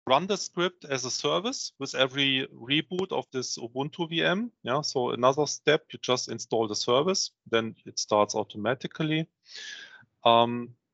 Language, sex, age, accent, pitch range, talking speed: English, male, 30-49, German, 100-125 Hz, 150 wpm